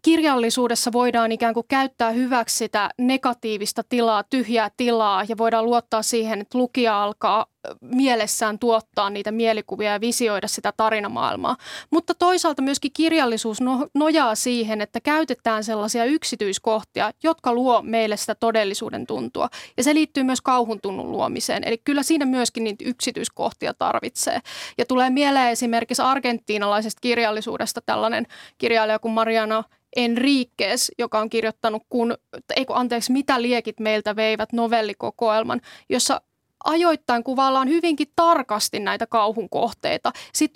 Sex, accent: female, native